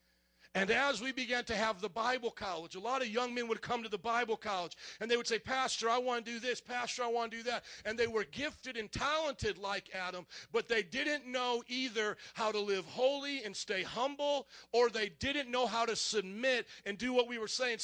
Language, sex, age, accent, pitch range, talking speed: English, male, 40-59, American, 170-235 Hz, 230 wpm